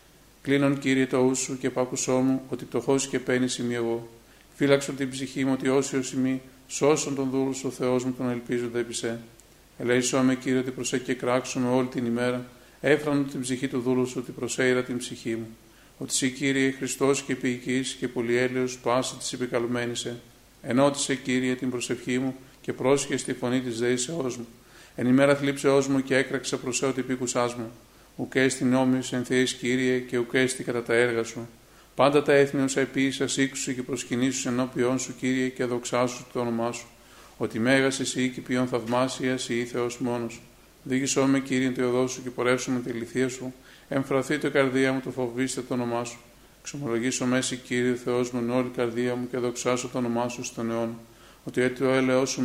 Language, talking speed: Greek, 175 wpm